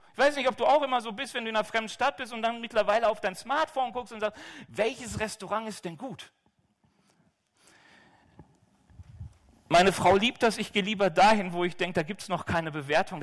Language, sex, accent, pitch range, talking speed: German, male, German, 180-265 Hz, 215 wpm